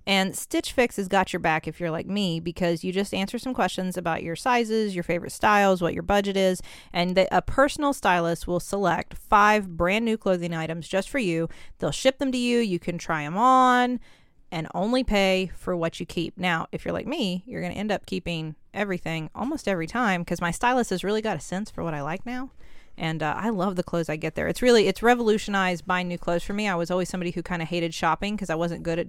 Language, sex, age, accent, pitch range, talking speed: English, female, 30-49, American, 170-205 Hz, 245 wpm